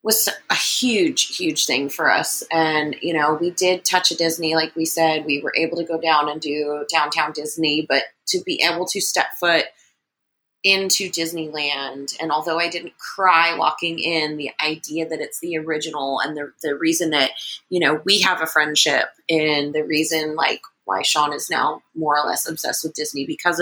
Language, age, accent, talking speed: English, 30-49, American, 195 wpm